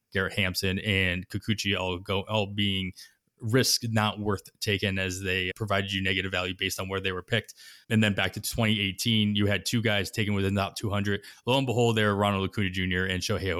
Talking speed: 210 wpm